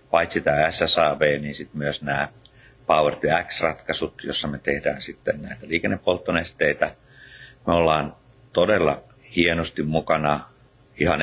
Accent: native